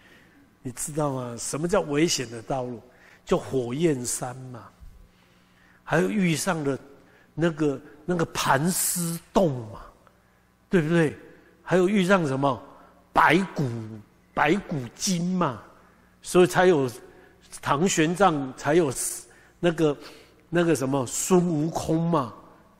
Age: 60-79